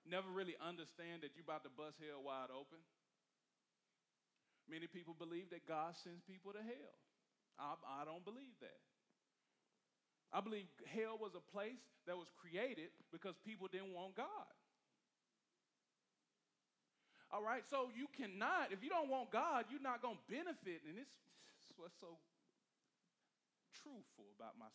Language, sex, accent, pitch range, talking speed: English, male, American, 175-265 Hz, 150 wpm